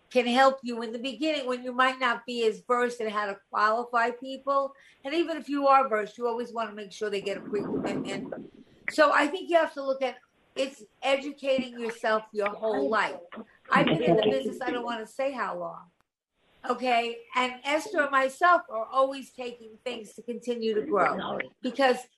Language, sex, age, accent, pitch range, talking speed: English, female, 50-69, American, 220-275 Hz, 205 wpm